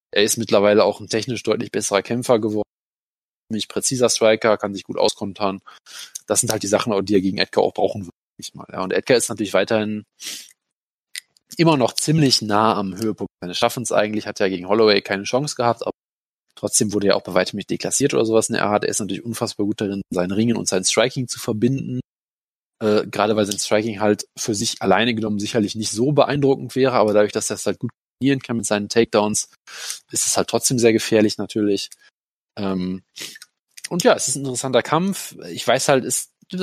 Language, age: German, 20-39